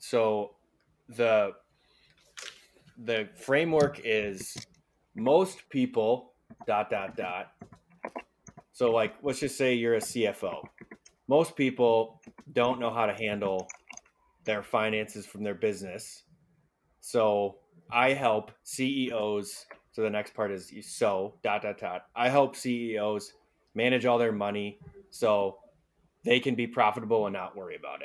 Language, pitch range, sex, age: English, 105-130 Hz, male, 20-39